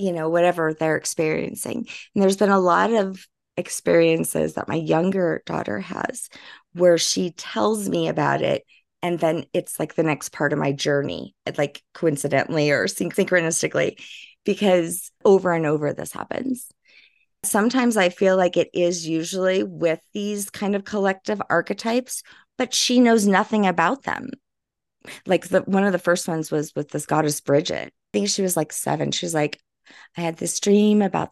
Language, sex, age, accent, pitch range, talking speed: English, female, 30-49, American, 160-200 Hz, 170 wpm